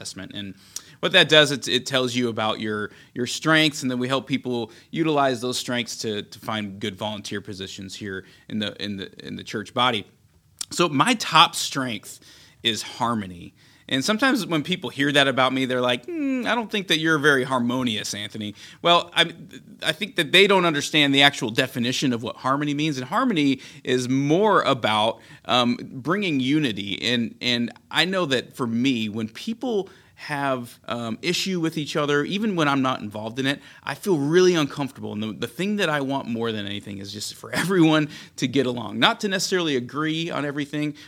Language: English